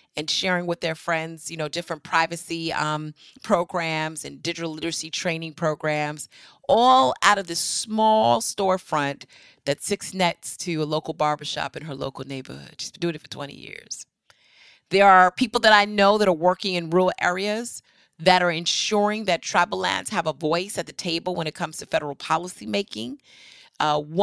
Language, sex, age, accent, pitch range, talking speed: English, female, 30-49, American, 150-185 Hz, 175 wpm